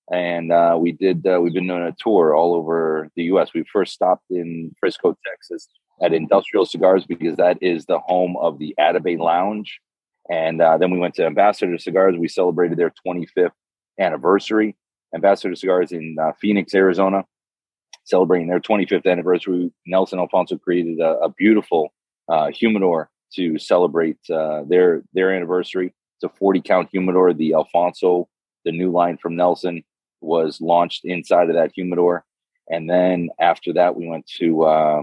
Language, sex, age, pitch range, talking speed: English, male, 30-49, 85-90 Hz, 160 wpm